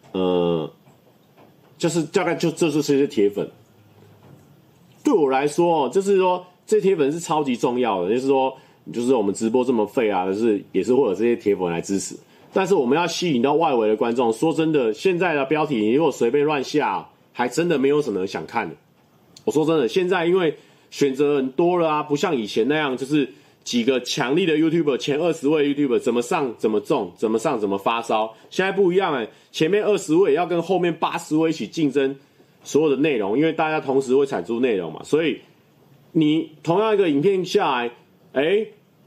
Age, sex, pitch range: 30-49, male, 135-190 Hz